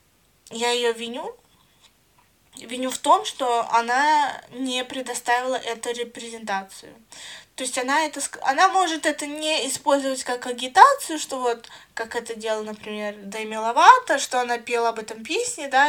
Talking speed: 145 wpm